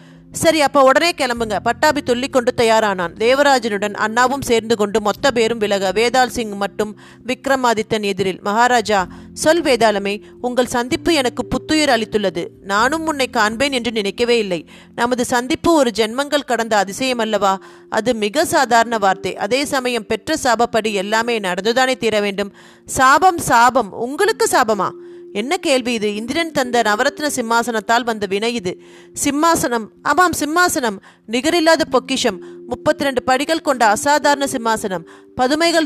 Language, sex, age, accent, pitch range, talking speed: Tamil, female, 30-49, native, 210-270 Hz, 125 wpm